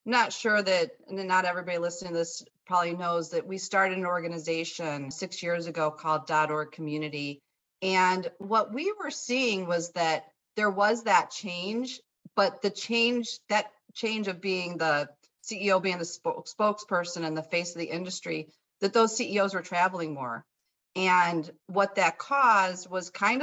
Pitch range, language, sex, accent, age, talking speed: 155-190 Hz, English, female, American, 40-59, 160 wpm